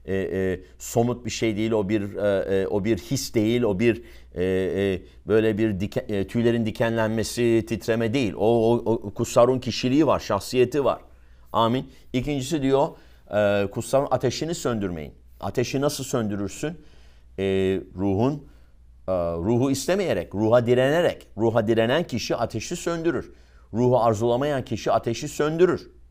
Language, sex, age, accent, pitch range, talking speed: English, male, 50-69, Turkish, 100-135 Hz, 140 wpm